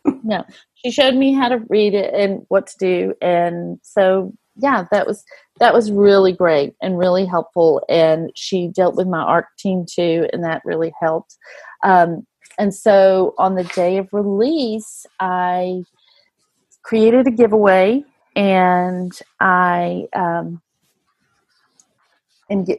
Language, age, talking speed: English, 40-59, 135 wpm